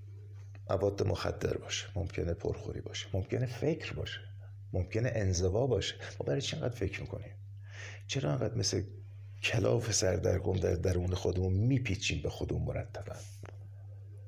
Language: Persian